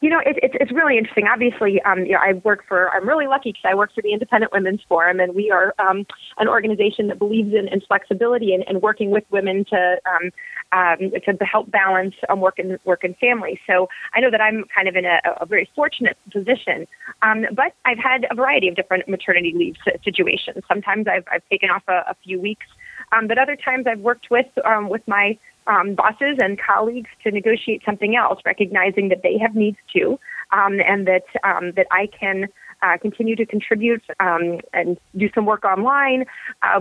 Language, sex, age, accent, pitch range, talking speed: English, female, 30-49, American, 185-230 Hz, 210 wpm